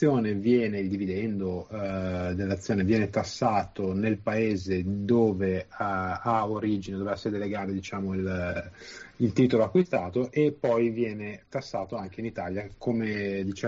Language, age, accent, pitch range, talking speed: Italian, 30-49, native, 100-120 Hz, 135 wpm